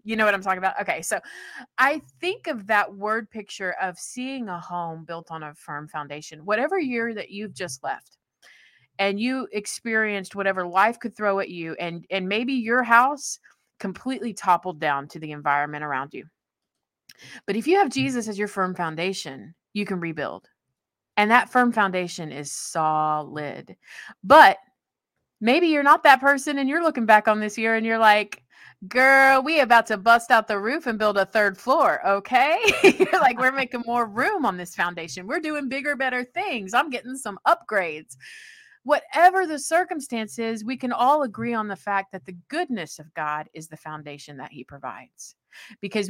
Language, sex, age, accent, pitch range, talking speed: English, female, 30-49, American, 175-255 Hz, 180 wpm